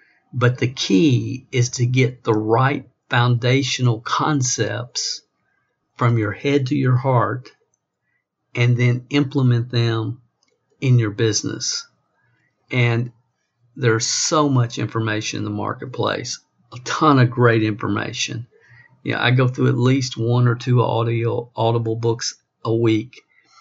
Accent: American